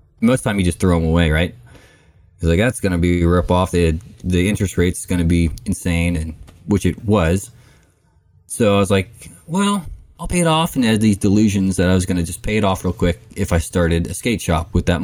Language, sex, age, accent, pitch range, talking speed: English, male, 20-39, American, 85-100 Hz, 245 wpm